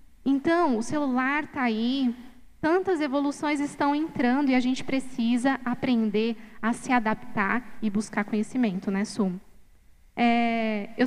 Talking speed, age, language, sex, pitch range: 125 wpm, 10-29, Portuguese, female, 225-280 Hz